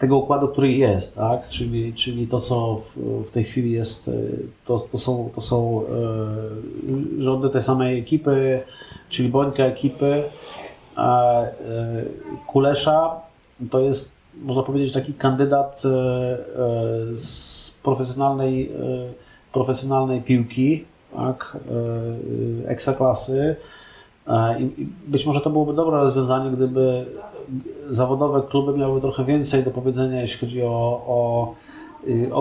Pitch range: 120-135 Hz